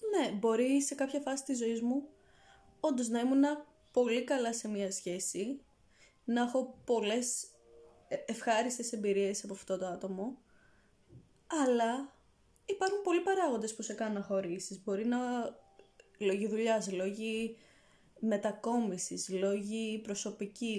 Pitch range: 200-270 Hz